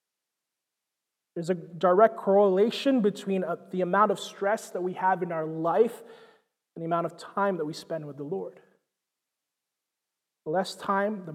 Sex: male